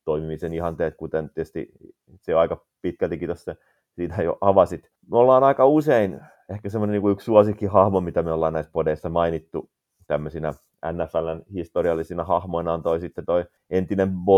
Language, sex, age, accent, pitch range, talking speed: Finnish, male, 30-49, native, 80-95 Hz, 150 wpm